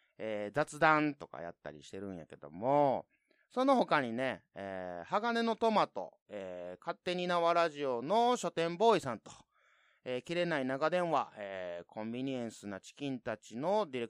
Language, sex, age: Japanese, male, 30-49